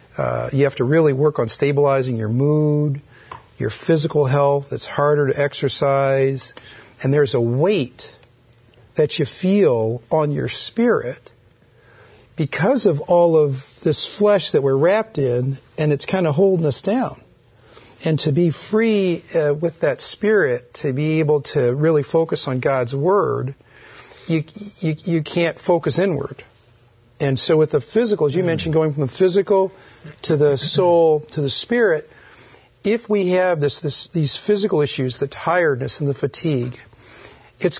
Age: 50-69